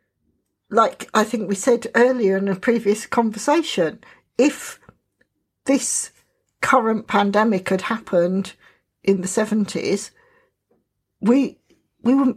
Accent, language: British, English